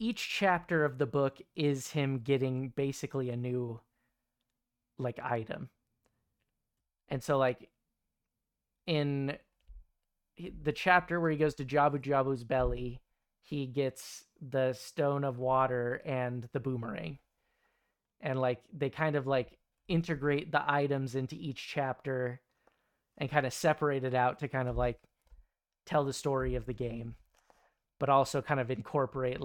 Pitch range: 125-150 Hz